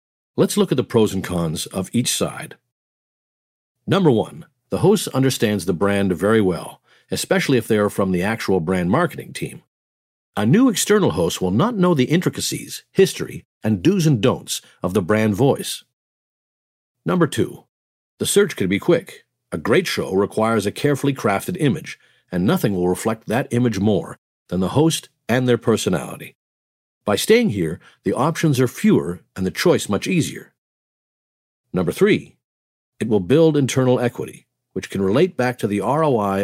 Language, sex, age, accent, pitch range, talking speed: English, male, 50-69, American, 95-145 Hz, 165 wpm